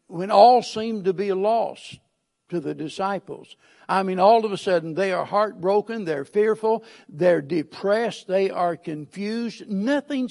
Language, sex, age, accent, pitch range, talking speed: English, male, 60-79, American, 170-210 Hz, 155 wpm